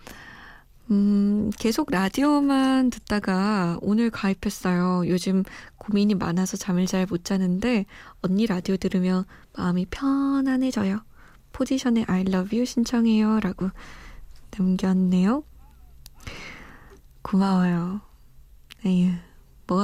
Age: 20-39